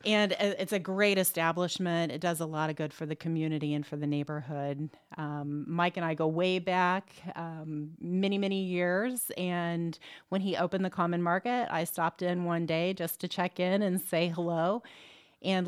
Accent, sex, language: American, female, English